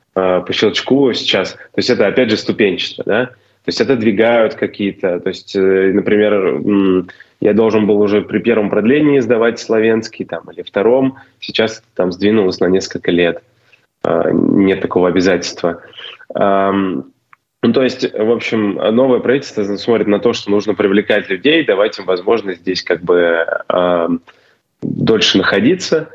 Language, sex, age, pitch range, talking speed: Russian, male, 20-39, 90-110 Hz, 140 wpm